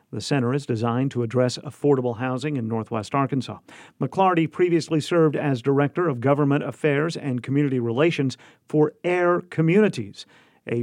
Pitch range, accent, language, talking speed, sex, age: 130-165 Hz, American, English, 145 wpm, male, 50-69